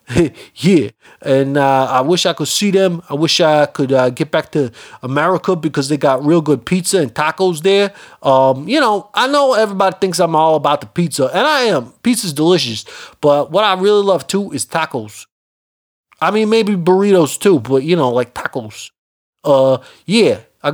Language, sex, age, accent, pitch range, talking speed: English, male, 30-49, American, 130-180 Hz, 190 wpm